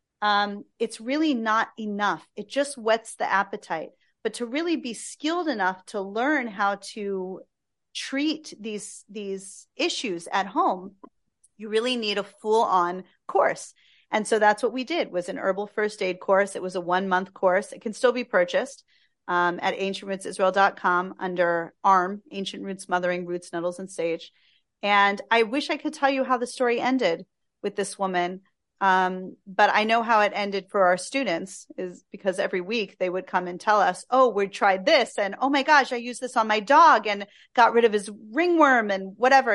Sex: female